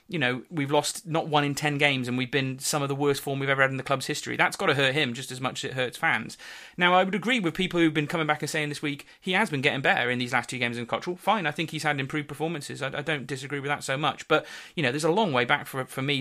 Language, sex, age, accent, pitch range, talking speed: English, male, 30-49, British, 130-155 Hz, 320 wpm